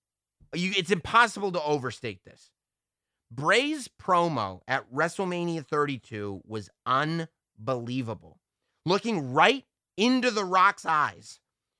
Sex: male